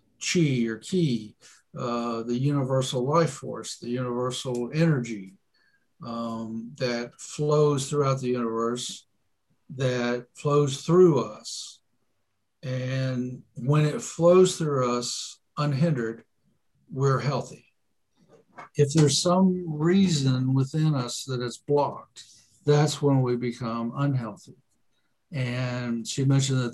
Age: 60-79